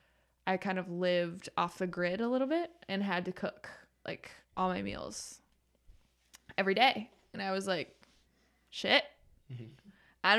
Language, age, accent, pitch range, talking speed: English, 10-29, American, 170-195 Hz, 150 wpm